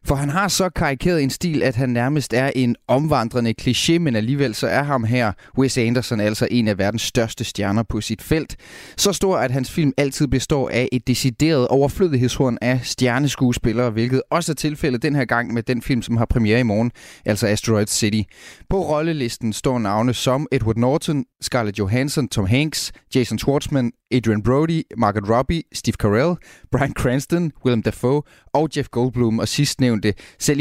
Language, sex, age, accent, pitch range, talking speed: Danish, male, 30-49, native, 115-140 Hz, 180 wpm